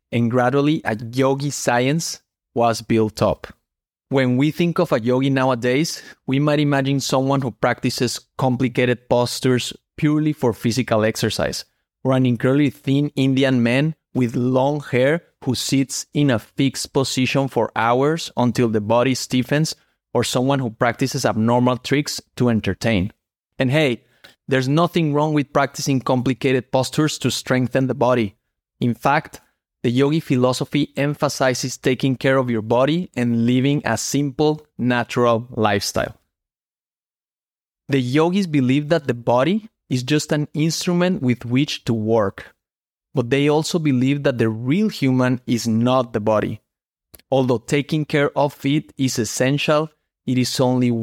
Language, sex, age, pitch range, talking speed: English, male, 30-49, 120-145 Hz, 145 wpm